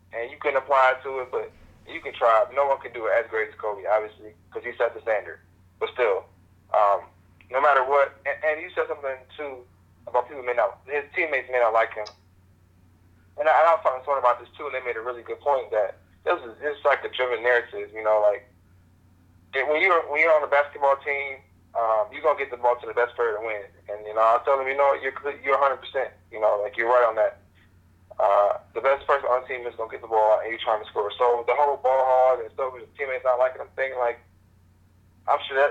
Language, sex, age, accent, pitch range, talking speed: English, male, 20-39, American, 100-140 Hz, 245 wpm